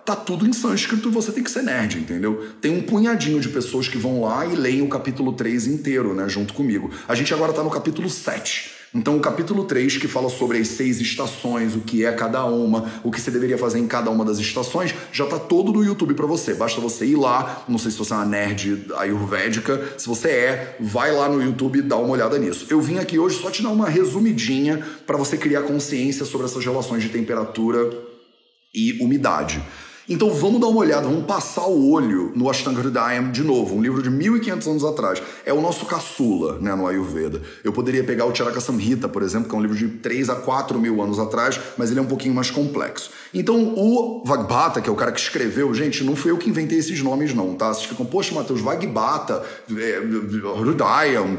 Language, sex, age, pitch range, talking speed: Portuguese, male, 30-49, 120-185 Hz, 220 wpm